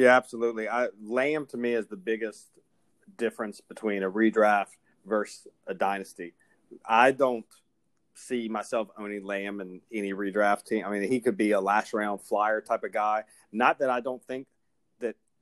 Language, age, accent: English, 30-49, American